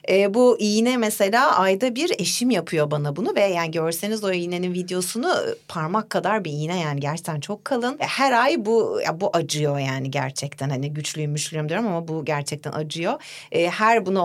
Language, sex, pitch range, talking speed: Turkish, female, 150-200 Hz, 180 wpm